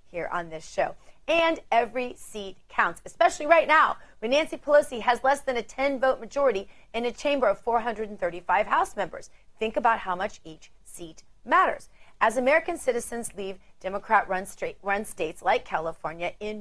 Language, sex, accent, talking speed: English, female, American, 155 wpm